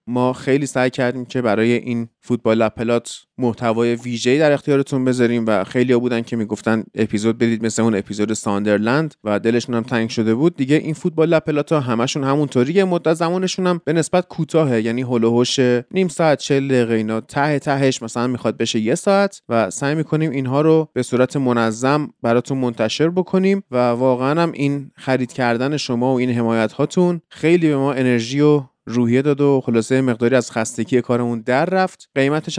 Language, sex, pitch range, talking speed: Persian, male, 115-150 Hz, 175 wpm